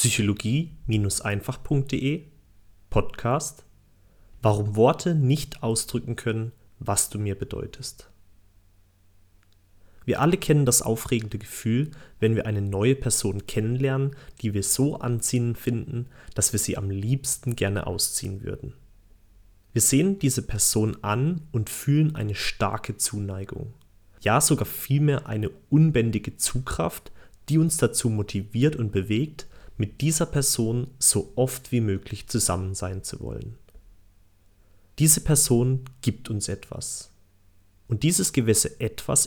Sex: male